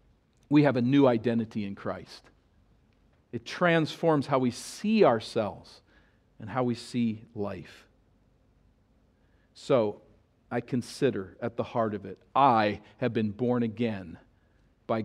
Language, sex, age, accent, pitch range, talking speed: English, male, 50-69, American, 120-185 Hz, 130 wpm